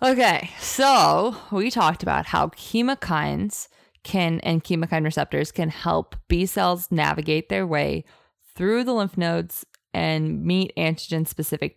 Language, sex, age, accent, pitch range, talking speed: English, female, 20-39, American, 160-195 Hz, 125 wpm